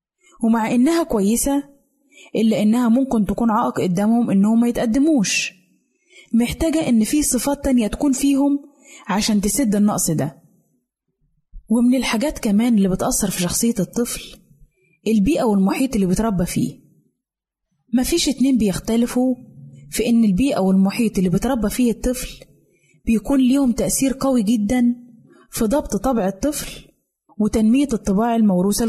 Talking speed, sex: 125 wpm, female